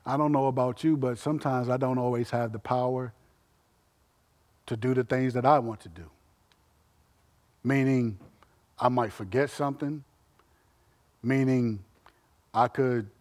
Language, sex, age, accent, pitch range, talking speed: English, male, 50-69, American, 110-135 Hz, 135 wpm